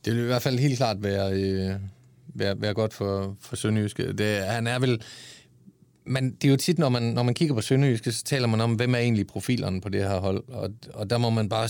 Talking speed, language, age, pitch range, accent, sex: 225 wpm, Danish, 30-49, 95-125 Hz, native, male